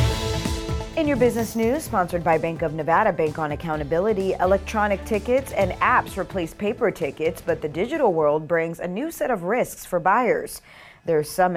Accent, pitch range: American, 155-225 Hz